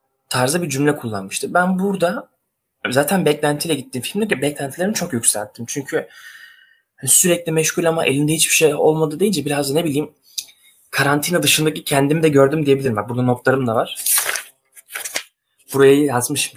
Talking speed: 135 wpm